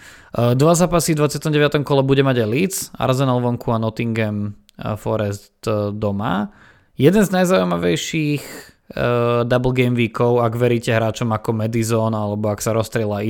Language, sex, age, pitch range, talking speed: Slovak, male, 20-39, 110-130 Hz, 145 wpm